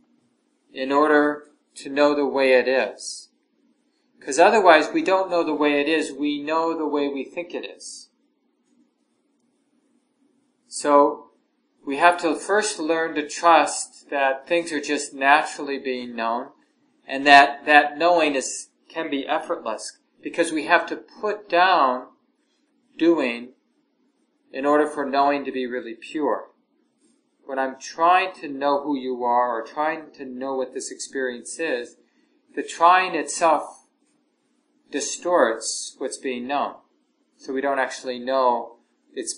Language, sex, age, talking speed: English, male, 40-59, 140 wpm